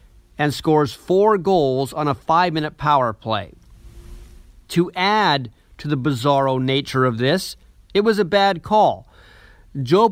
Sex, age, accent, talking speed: male, 40-59, American, 135 wpm